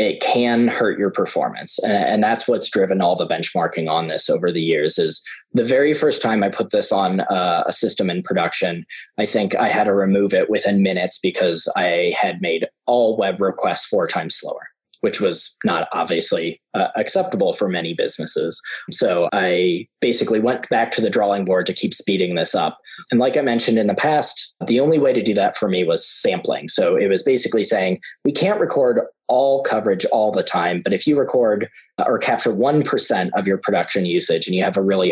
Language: English